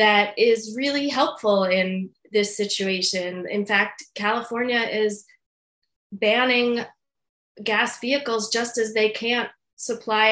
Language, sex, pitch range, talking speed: English, female, 205-245 Hz, 110 wpm